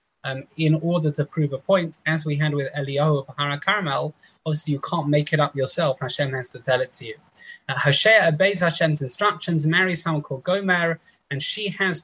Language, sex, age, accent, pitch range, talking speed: English, male, 20-39, British, 135-175 Hz, 200 wpm